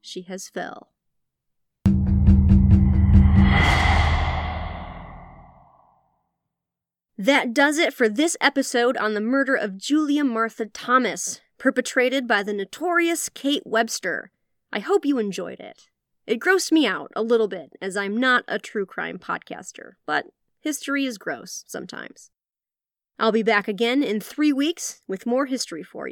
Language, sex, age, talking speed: English, female, 30-49, 130 wpm